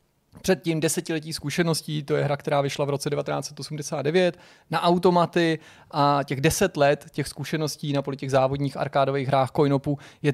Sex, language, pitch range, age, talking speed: male, Czech, 135-155 Hz, 30-49, 155 wpm